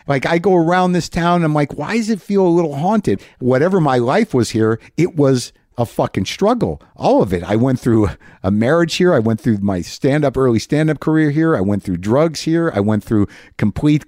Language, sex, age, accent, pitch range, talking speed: English, male, 50-69, American, 115-160 Hz, 220 wpm